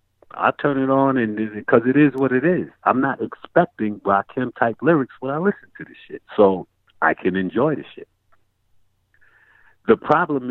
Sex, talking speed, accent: male, 185 wpm, American